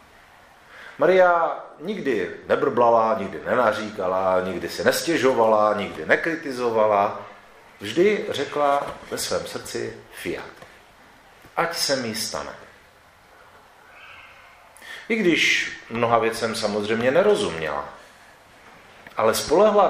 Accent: native